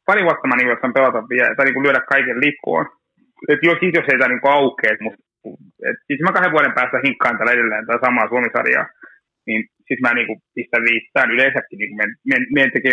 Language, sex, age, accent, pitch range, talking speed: Finnish, male, 30-49, native, 120-170 Hz, 200 wpm